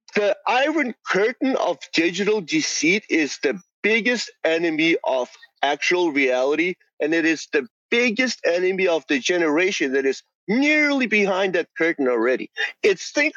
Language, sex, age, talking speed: English, male, 30-49, 135 wpm